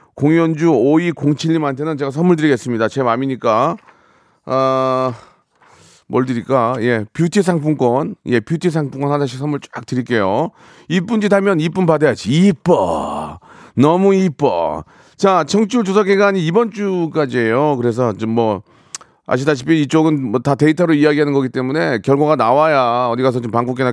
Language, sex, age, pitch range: Korean, male, 40-59, 135-185 Hz